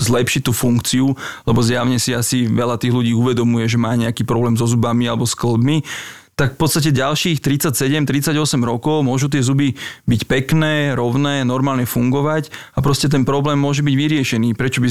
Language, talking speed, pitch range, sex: Slovak, 175 wpm, 120-135 Hz, male